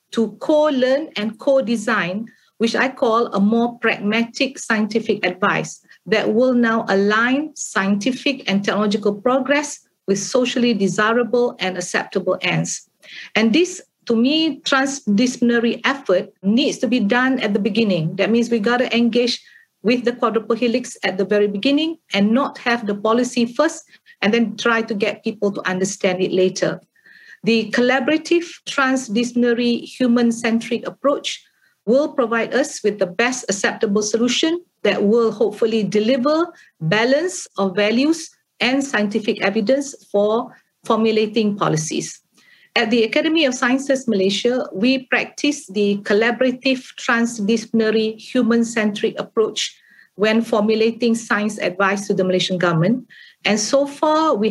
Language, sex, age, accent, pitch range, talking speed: English, female, 50-69, Malaysian, 210-255 Hz, 135 wpm